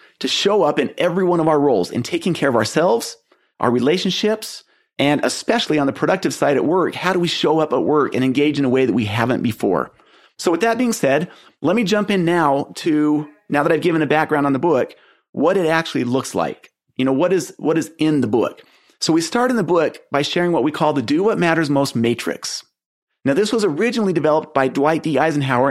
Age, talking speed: 30-49, 235 wpm